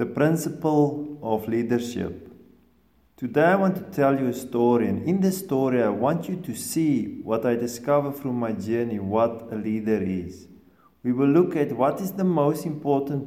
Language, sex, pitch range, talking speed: English, male, 115-145 Hz, 180 wpm